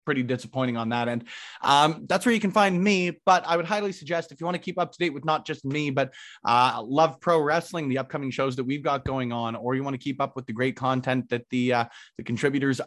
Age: 30-49